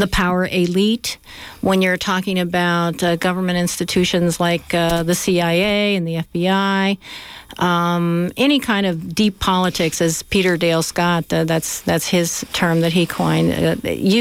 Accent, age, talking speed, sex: American, 50-69, 145 wpm, female